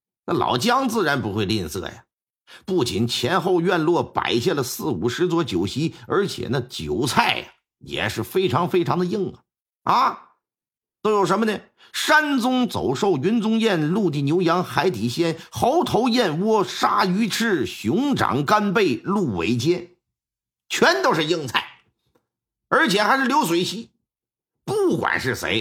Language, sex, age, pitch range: Chinese, male, 50-69, 140-230 Hz